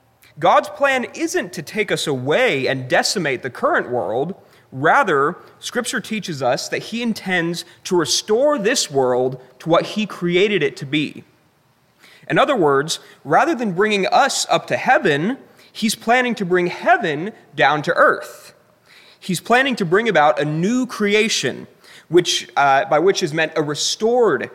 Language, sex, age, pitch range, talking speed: English, male, 30-49, 145-210 Hz, 155 wpm